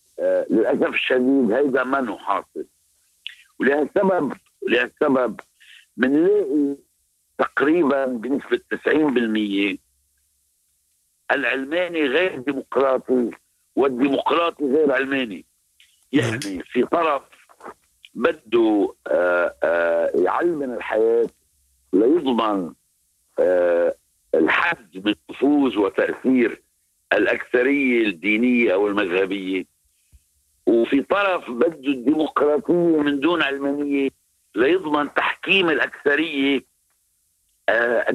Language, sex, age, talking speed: Arabic, male, 60-79, 65 wpm